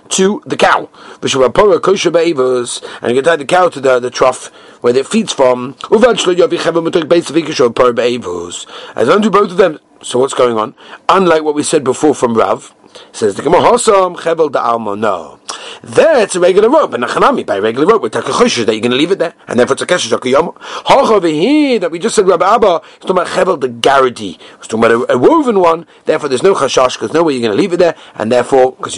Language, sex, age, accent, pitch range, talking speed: English, male, 40-59, British, 155-235 Hz, 210 wpm